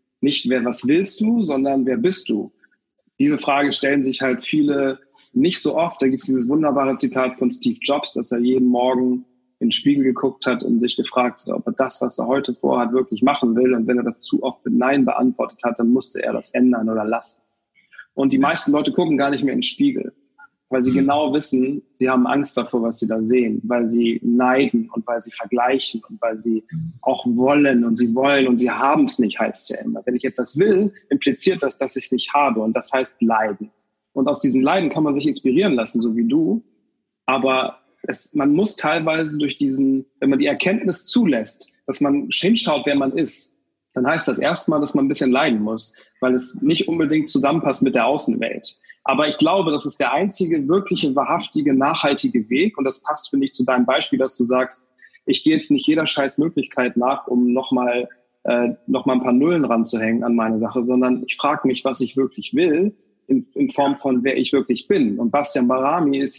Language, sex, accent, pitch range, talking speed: German, male, German, 125-155 Hz, 215 wpm